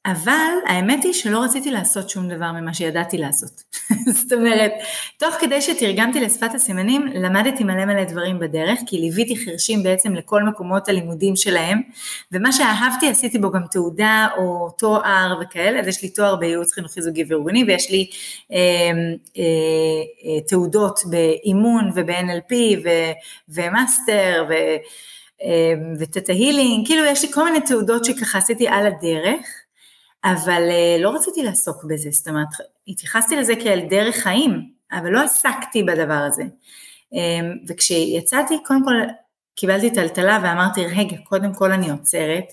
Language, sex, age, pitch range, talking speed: Hebrew, female, 30-49, 170-225 Hz, 135 wpm